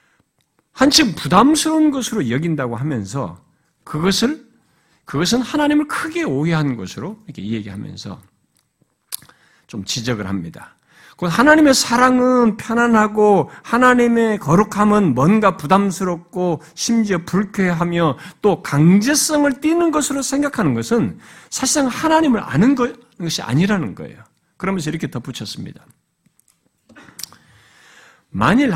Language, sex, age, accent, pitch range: Korean, male, 50-69, native, 175-280 Hz